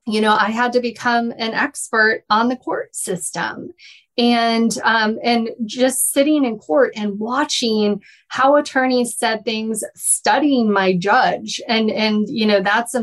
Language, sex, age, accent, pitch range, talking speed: English, female, 30-49, American, 205-245 Hz, 155 wpm